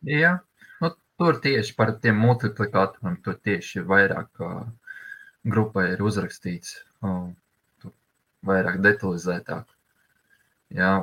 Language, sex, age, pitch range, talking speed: English, male, 20-39, 95-125 Hz, 110 wpm